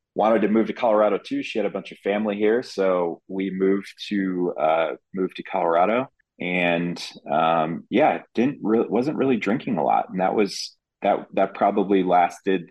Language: English